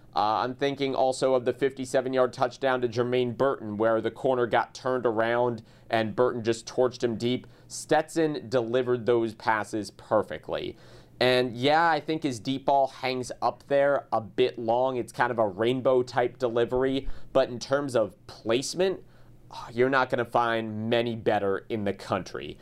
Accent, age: American, 30-49